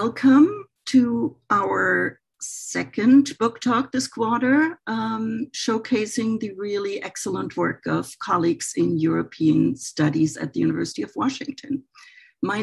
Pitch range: 155-235 Hz